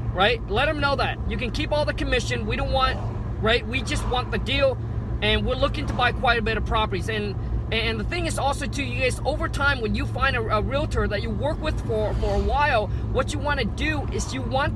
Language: English